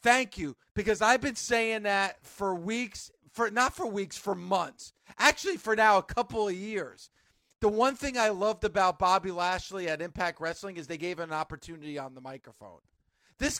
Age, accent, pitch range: 40-59, American, 170-210 Hz